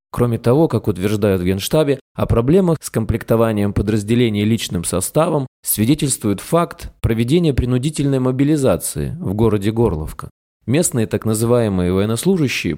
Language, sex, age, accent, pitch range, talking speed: Russian, male, 20-39, native, 105-140 Hz, 115 wpm